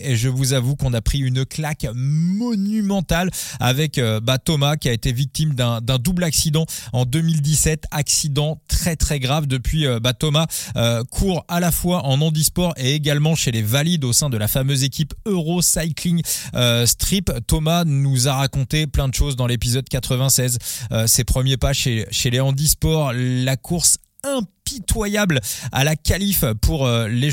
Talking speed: 170 wpm